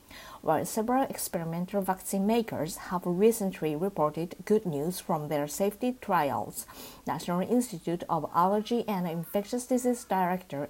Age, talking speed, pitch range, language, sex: 50-69, 125 wpm, 170-210 Hz, English, female